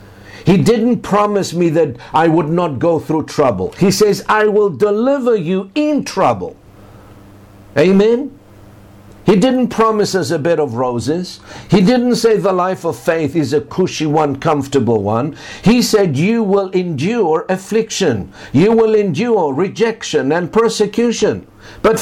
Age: 60-79